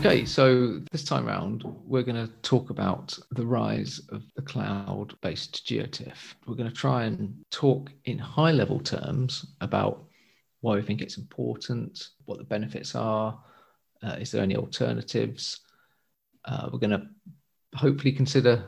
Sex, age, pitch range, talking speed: male, 40-59, 115-140 Hz, 155 wpm